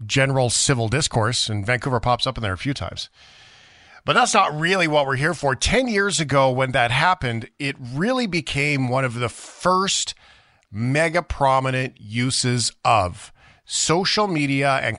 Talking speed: 160 wpm